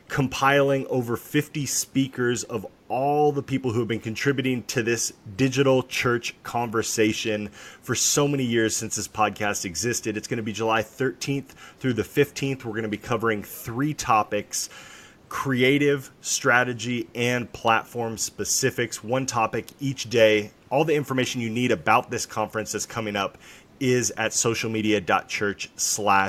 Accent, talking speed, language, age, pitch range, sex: American, 145 wpm, English, 30-49, 115-140 Hz, male